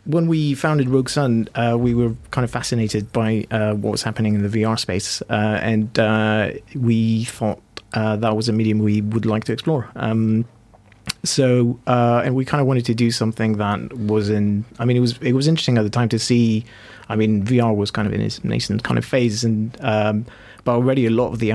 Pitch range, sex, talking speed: 105-120 Hz, male, 230 wpm